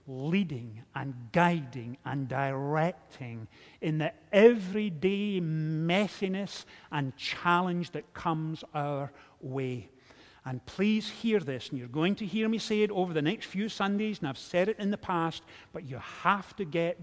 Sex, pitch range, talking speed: male, 145-205 Hz, 155 wpm